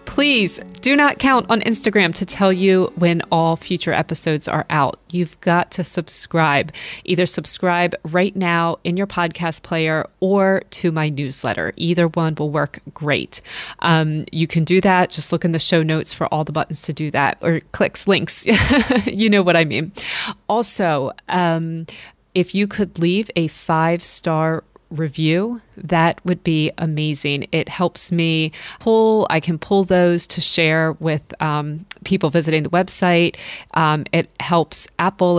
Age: 30-49